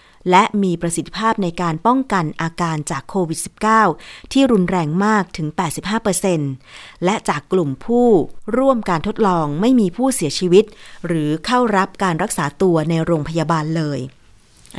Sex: female